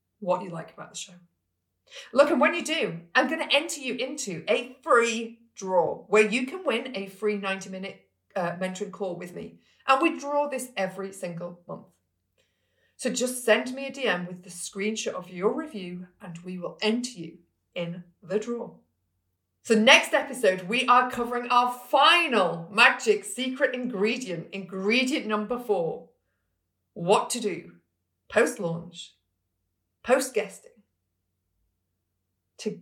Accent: British